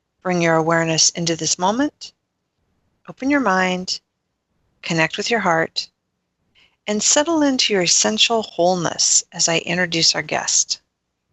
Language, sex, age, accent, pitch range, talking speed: English, female, 40-59, American, 170-210 Hz, 125 wpm